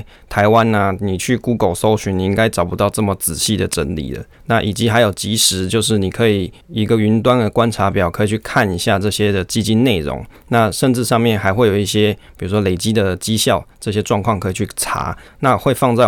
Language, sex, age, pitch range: Chinese, male, 20-39, 100-120 Hz